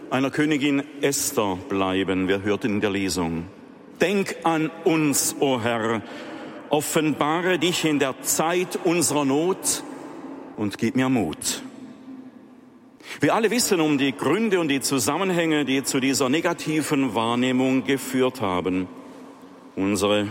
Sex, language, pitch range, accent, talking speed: male, German, 125-175 Hz, German, 125 wpm